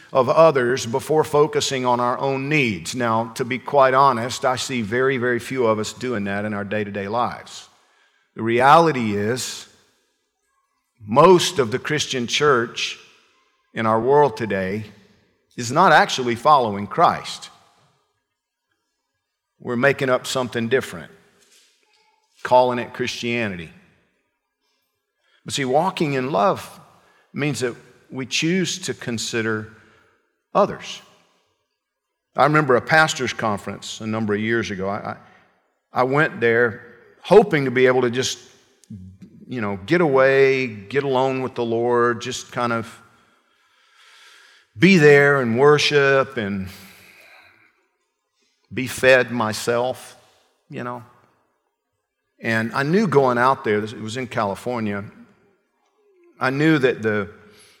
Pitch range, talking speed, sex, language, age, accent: 115-145 Hz, 125 wpm, male, English, 50-69, American